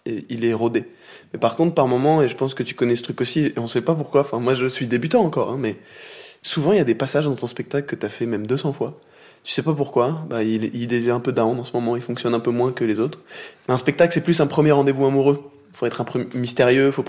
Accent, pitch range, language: French, 120-140 Hz, French